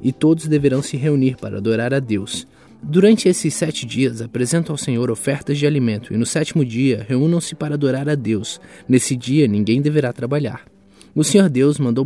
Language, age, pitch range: Portuguese, 20-39, 115-145 Hz